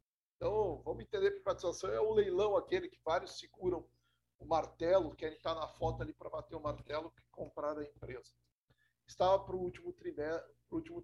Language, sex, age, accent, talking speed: Portuguese, male, 50-69, Brazilian, 180 wpm